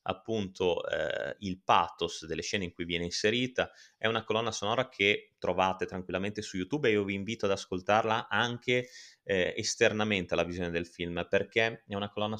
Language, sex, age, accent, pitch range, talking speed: Italian, male, 20-39, native, 90-110 Hz, 175 wpm